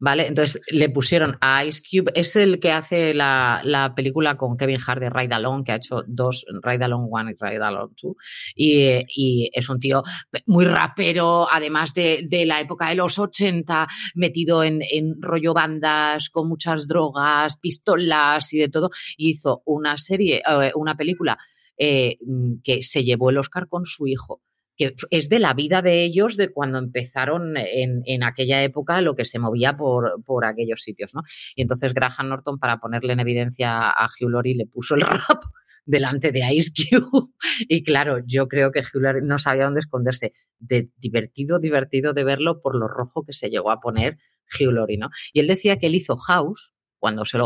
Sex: female